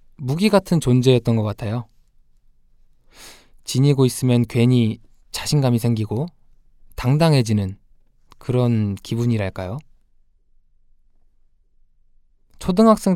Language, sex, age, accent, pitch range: Korean, male, 20-39, native, 110-140 Hz